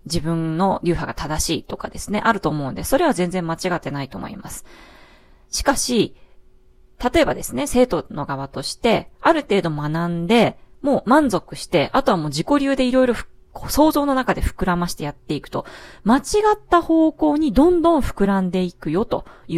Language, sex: Japanese, female